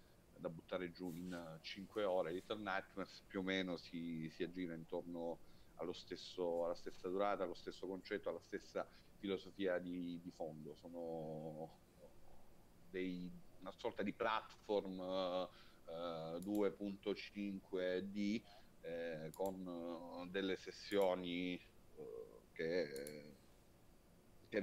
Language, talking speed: Italian, 105 wpm